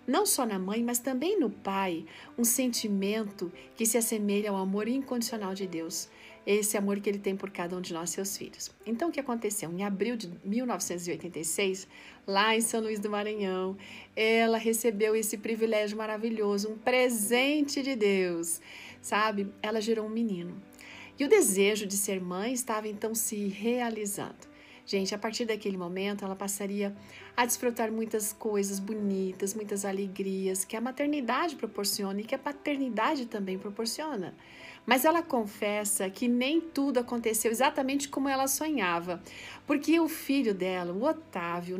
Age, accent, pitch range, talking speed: 50-69, Brazilian, 195-250 Hz, 155 wpm